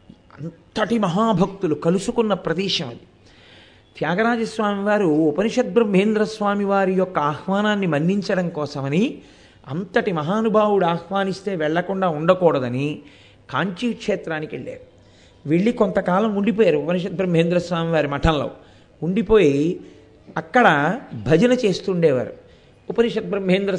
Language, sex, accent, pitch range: Telugu, male, native, 150-200 Hz